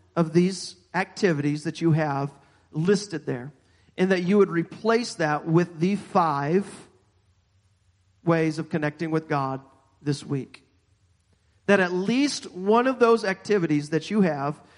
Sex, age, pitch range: male, 40-59, 155-195 Hz